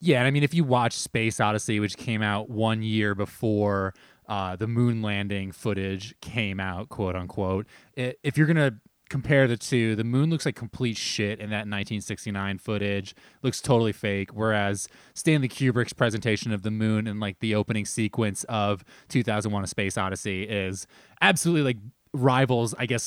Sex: male